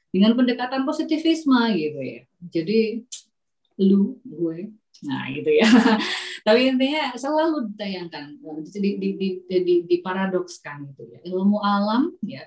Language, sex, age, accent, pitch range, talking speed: Indonesian, female, 30-49, native, 170-220 Hz, 125 wpm